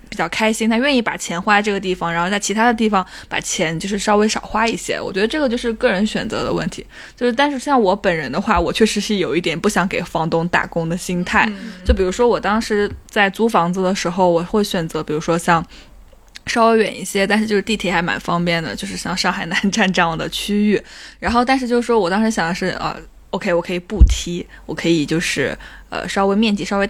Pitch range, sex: 180-230 Hz, female